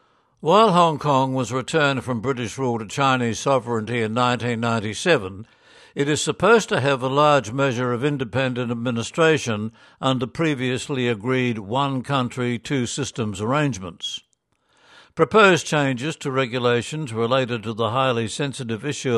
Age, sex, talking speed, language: 60-79, male, 130 wpm, English